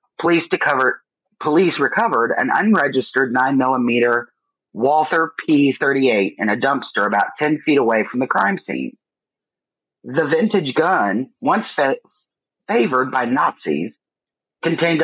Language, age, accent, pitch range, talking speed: English, 40-59, American, 120-160 Hz, 120 wpm